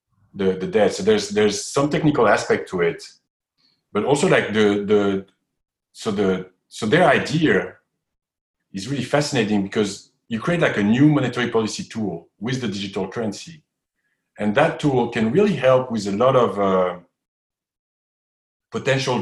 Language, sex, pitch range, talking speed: English, male, 100-150 Hz, 155 wpm